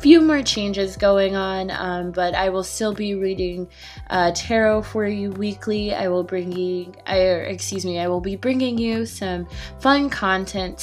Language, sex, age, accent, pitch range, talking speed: English, female, 20-39, American, 175-210 Hz, 170 wpm